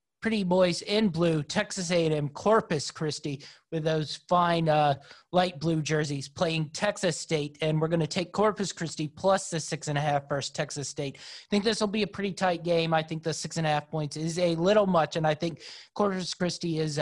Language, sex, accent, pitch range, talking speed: English, male, American, 150-180 Hz, 215 wpm